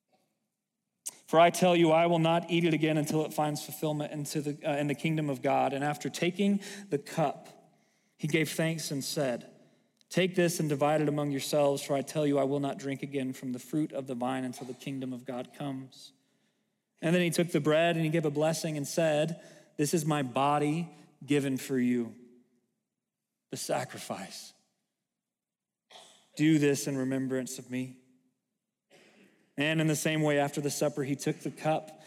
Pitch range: 140-165 Hz